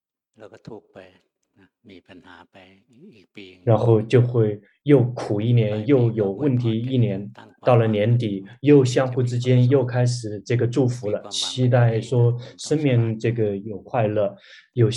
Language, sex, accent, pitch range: Chinese, male, native, 105-130 Hz